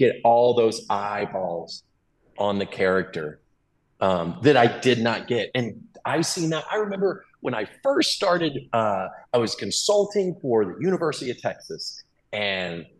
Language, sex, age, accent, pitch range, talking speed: English, male, 30-49, American, 115-170 Hz, 150 wpm